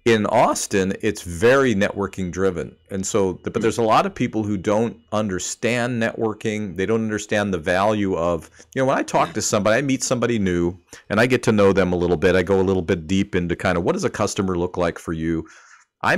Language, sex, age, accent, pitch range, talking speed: English, male, 40-59, American, 90-105 Hz, 230 wpm